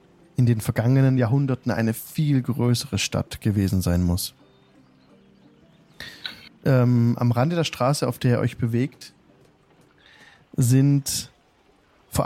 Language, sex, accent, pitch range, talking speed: German, male, German, 115-135 Hz, 115 wpm